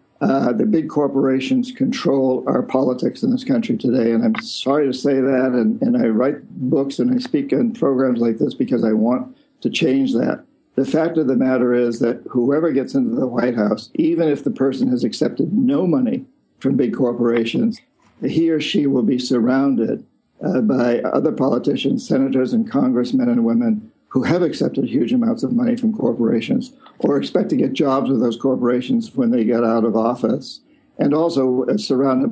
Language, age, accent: English, 50-69, American